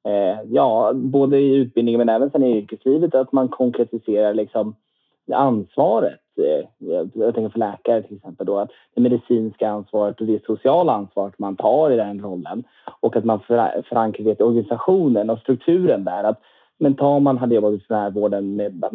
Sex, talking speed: male, 160 wpm